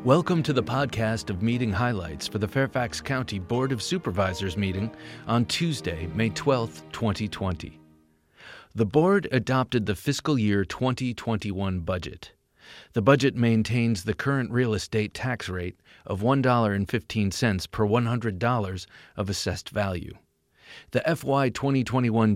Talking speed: 125 wpm